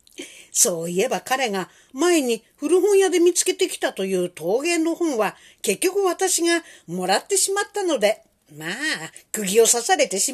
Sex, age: female, 50-69